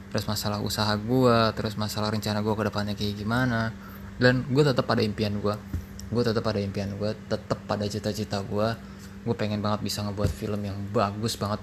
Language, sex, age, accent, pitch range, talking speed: Indonesian, male, 20-39, native, 100-115 Hz, 185 wpm